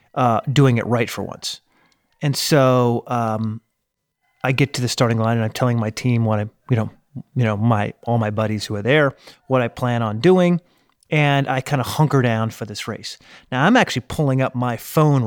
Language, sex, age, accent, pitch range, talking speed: English, male, 30-49, American, 110-140 Hz, 210 wpm